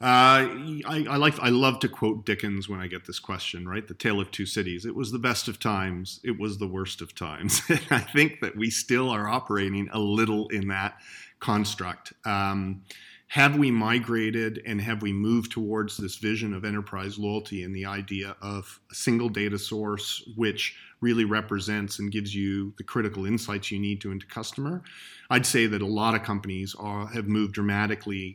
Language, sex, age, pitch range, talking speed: English, male, 40-59, 100-115 Hz, 195 wpm